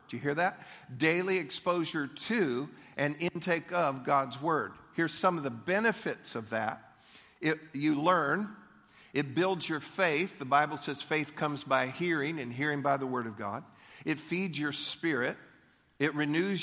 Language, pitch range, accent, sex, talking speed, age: English, 135-170 Hz, American, male, 160 wpm, 50-69